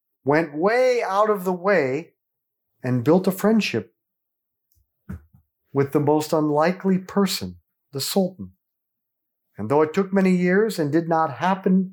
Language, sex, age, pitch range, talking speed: English, male, 40-59, 135-190 Hz, 135 wpm